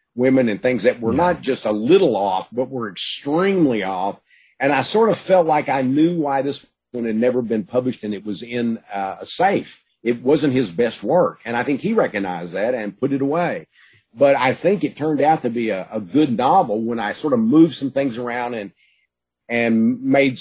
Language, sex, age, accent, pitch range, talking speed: English, male, 50-69, American, 110-140 Hz, 220 wpm